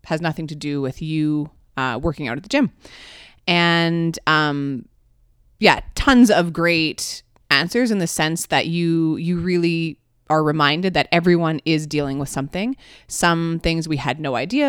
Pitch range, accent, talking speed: 145-185 Hz, American, 165 wpm